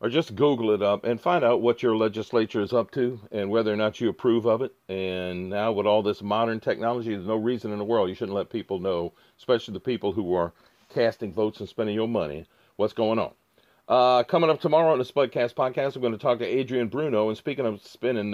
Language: English